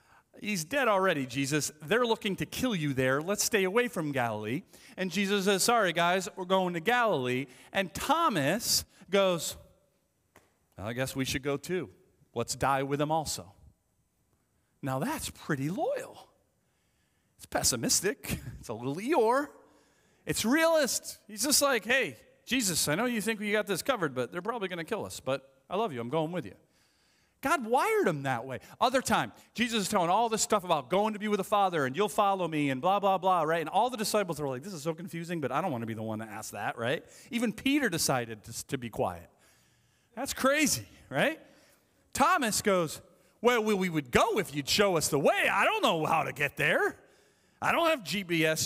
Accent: American